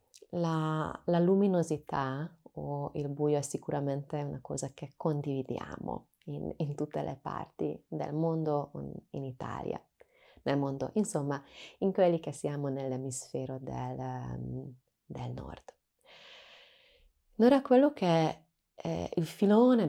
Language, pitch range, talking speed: Italian, 140-165 Hz, 115 wpm